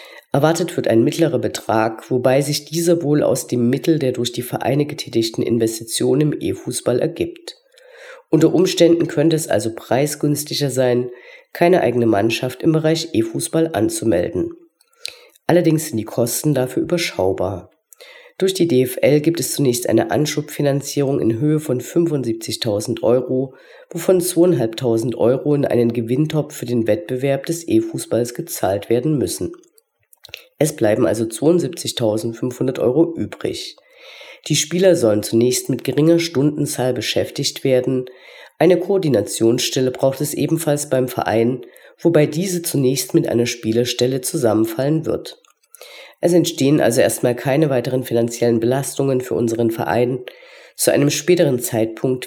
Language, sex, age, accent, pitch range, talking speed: German, female, 40-59, German, 120-170 Hz, 130 wpm